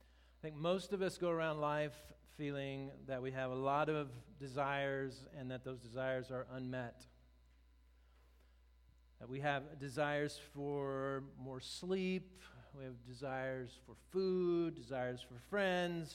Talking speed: 140 wpm